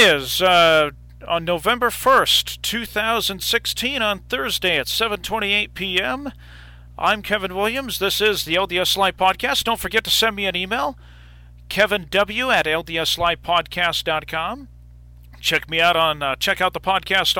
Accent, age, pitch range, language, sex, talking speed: American, 40-59, 145-200 Hz, English, male, 140 wpm